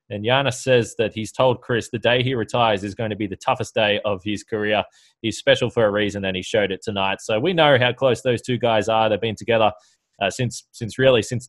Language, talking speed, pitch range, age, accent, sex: English, 250 wpm, 110-130 Hz, 20-39, Australian, male